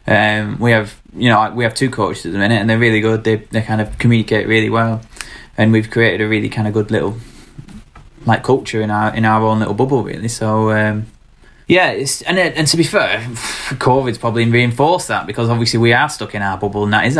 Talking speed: 230 wpm